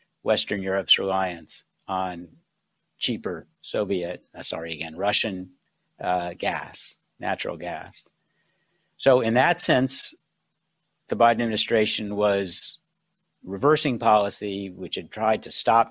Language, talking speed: English, 110 wpm